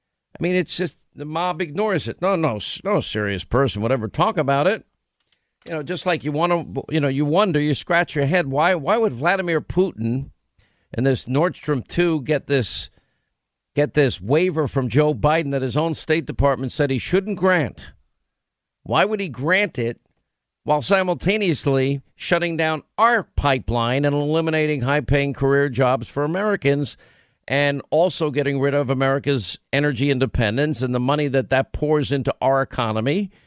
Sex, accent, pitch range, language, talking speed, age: male, American, 130-165 Hz, English, 170 wpm, 50-69